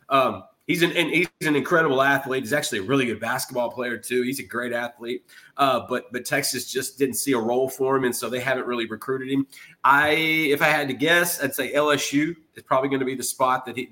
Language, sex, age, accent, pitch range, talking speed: English, male, 30-49, American, 130-150 Hz, 240 wpm